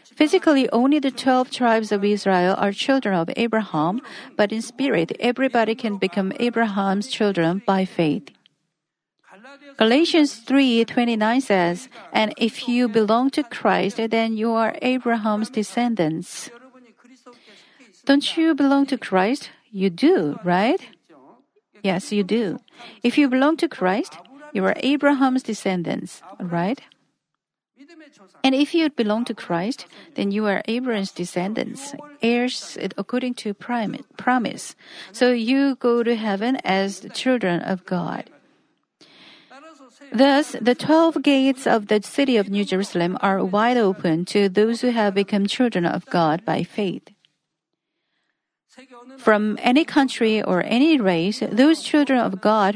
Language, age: Korean, 50-69